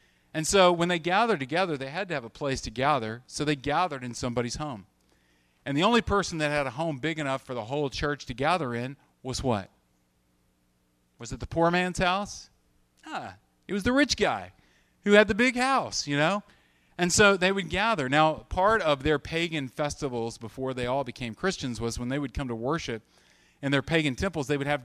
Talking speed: 210 wpm